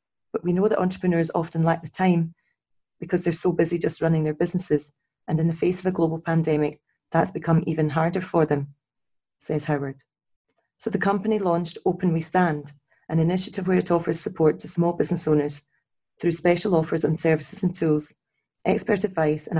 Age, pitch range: 30-49, 155-180 Hz